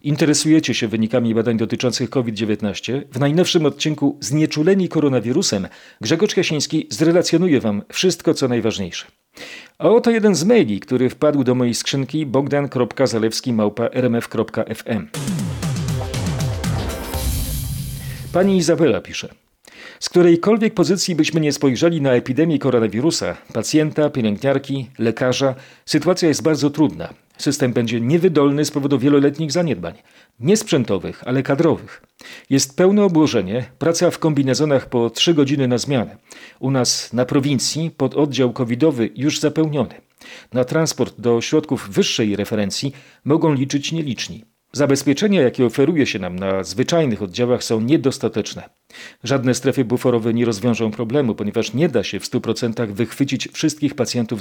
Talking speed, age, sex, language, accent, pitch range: 125 wpm, 40-59, male, Polish, native, 115-155 Hz